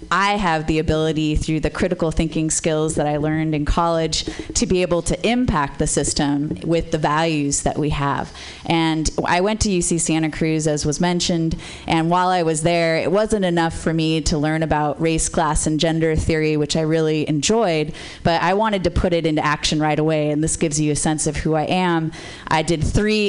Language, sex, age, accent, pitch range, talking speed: English, female, 30-49, American, 155-175 Hz, 210 wpm